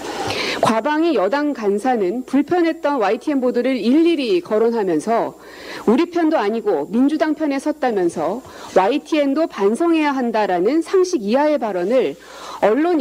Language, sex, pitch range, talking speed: English, female, 240-325 Hz, 95 wpm